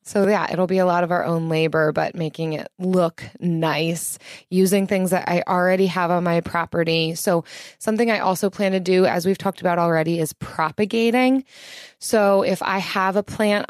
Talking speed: 195 wpm